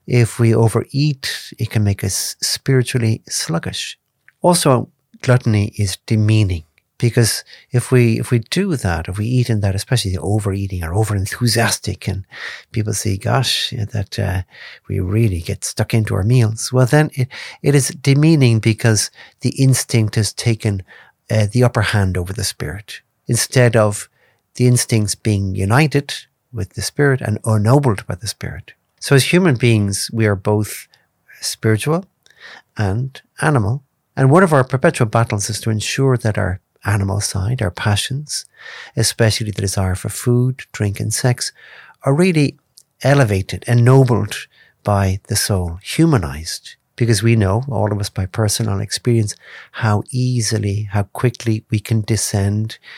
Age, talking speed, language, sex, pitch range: 50-69, 150 wpm, English, male, 105-125 Hz